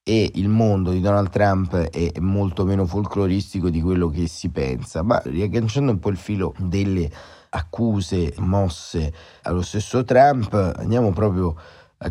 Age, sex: 30-49, male